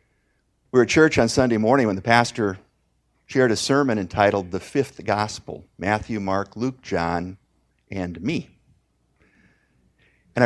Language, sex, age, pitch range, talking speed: English, male, 50-69, 95-135 Hz, 140 wpm